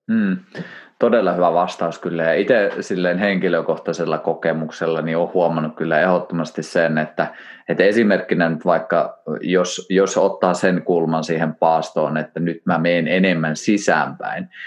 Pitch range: 80-95 Hz